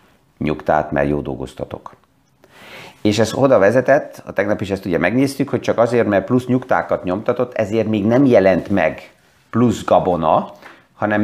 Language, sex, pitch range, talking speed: Hungarian, male, 100-130 Hz, 155 wpm